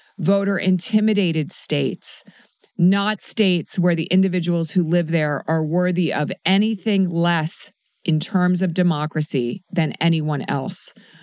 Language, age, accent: English, 30-49, American